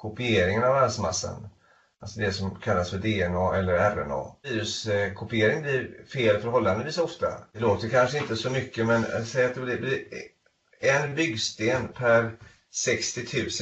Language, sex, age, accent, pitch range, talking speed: Swedish, male, 30-49, native, 105-120 Hz, 135 wpm